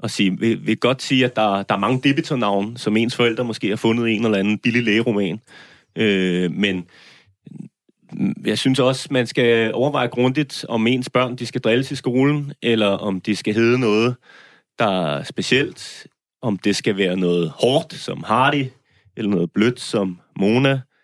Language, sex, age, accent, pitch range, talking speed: Danish, male, 30-49, native, 115-150 Hz, 175 wpm